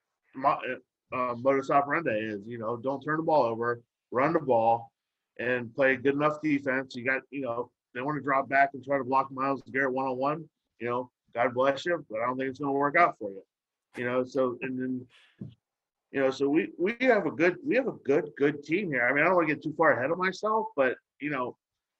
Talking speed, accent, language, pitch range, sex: 235 wpm, American, English, 125-145 Hz, male